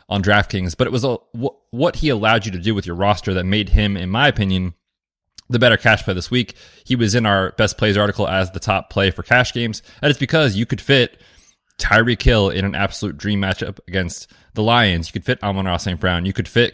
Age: 20-39